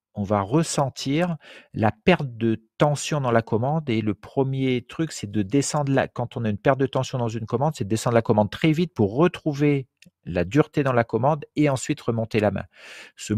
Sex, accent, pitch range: male, French, 100-130 Hz